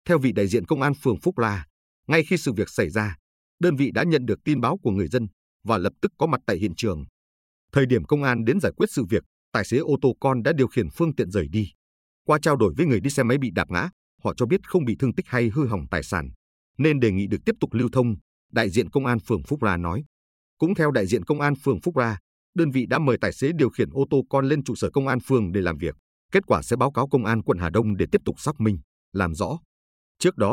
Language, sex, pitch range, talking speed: Vietnamese, male, 100-140 Hz, 275 wpm